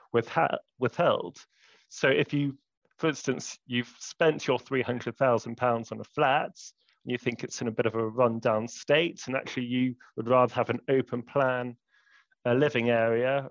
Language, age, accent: English, 30-49, British